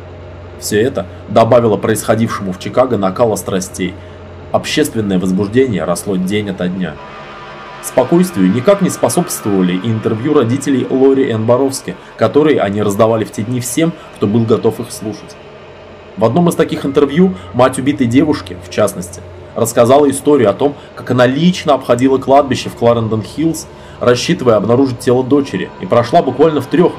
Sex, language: male, Russian